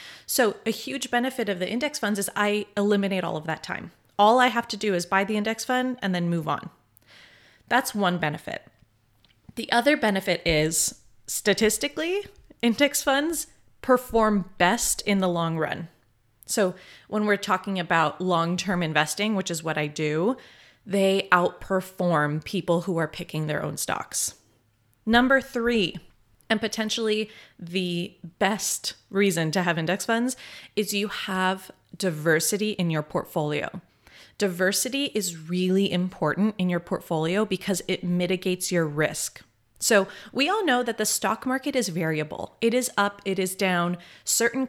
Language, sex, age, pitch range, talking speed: English, female, 30-49, 175-220 Hz, 150 wpm